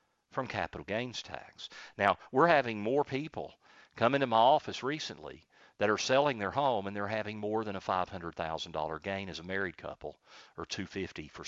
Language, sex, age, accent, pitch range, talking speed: English, male, 50-69, American, 90-115 Hz, 185 wpm